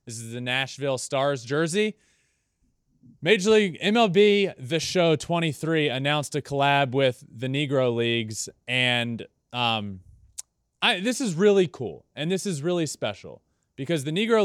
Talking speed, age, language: 135 wpm, 20-39, English